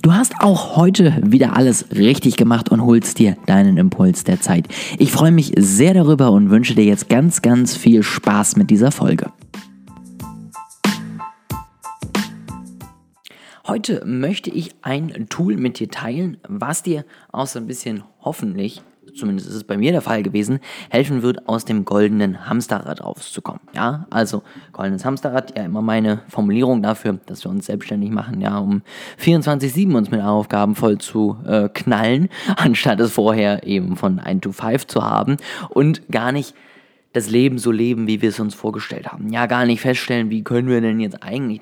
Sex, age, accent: male, 20-39, German